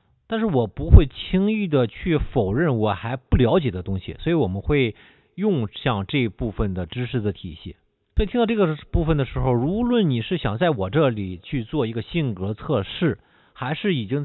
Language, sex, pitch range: Chinese, male, 110-155 Hz